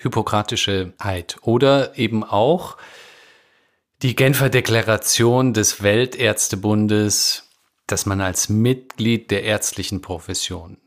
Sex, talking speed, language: male, 95 wpm, German